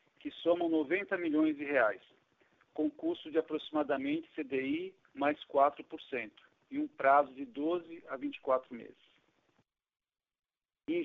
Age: 50-69